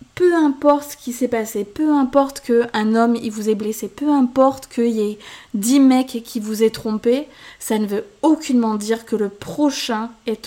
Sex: female